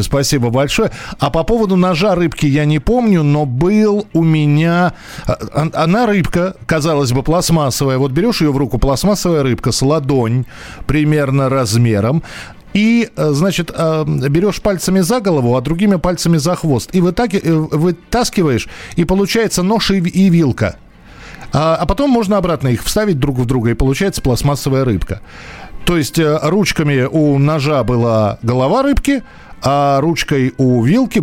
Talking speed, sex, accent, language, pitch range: 140 wpm, male, native, Russian, 130-180 Hz